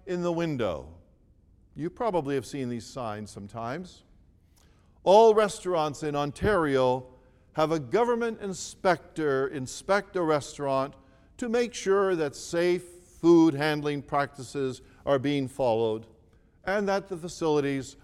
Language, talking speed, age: English, 120 wpm, 50-69